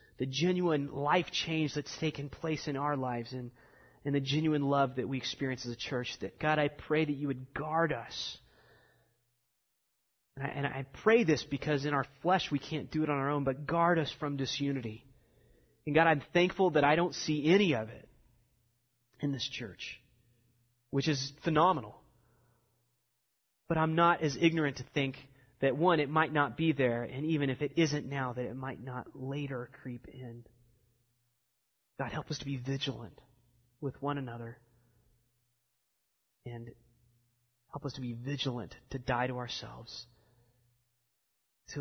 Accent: American